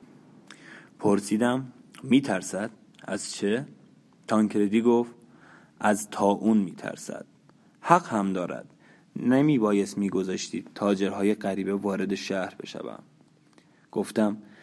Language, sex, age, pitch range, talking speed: Persian, male, 20-39, 100-115 Hz, 95 wpm